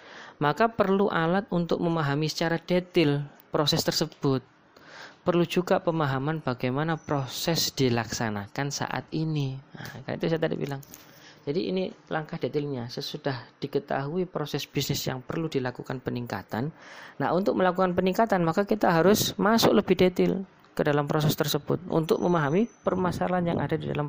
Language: Indonesian